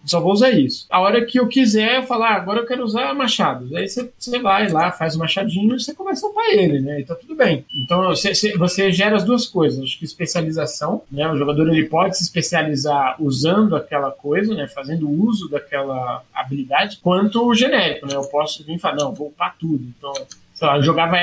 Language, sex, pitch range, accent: Portuguese, male, 150-195 Hz, Brazilian